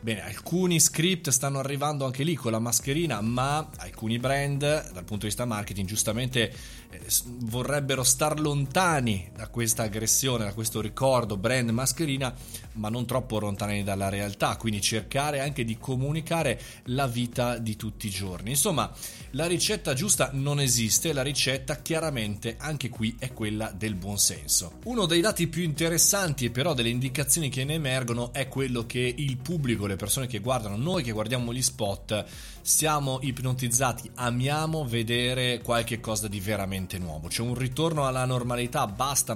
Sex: male